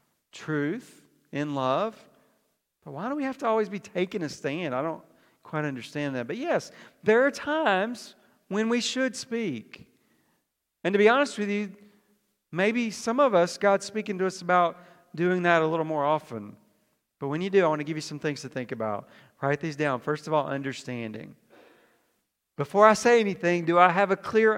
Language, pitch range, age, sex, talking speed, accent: English, 155-215 Hz, 40-59, male, 195 wpm, American